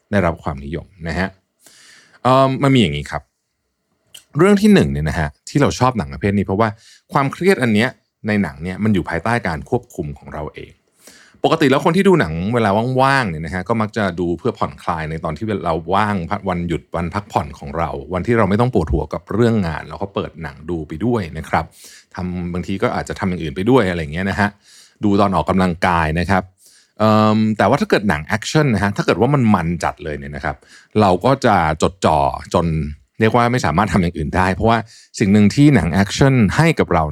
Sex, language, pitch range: male, Thai, 85-115 Hz